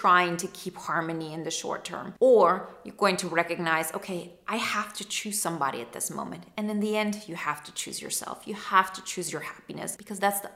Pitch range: 175-215 Hz